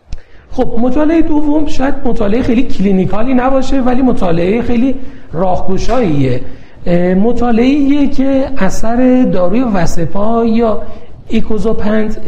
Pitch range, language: 160-240 Hz, Persian